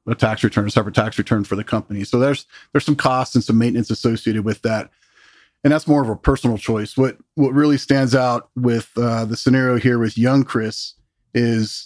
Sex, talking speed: male, 210 wpm